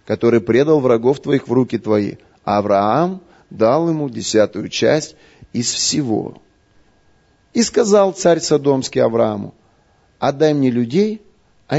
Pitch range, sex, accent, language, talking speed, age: 115-175 Hz, male, native, Russian, 115 wpm, 30-49